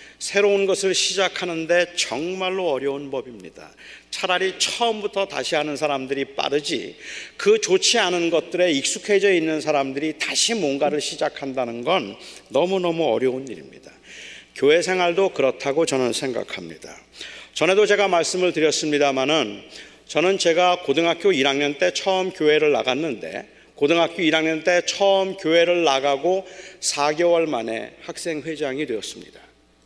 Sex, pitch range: male, 150-190 Hz